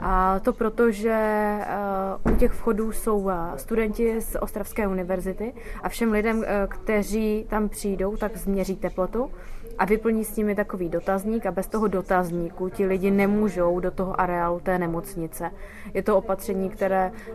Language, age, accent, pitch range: Czech, 20-39, native, 190-215 Hz